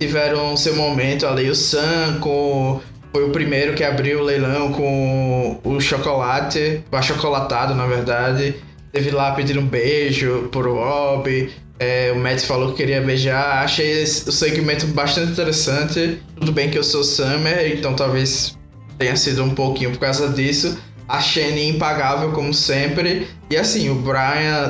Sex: male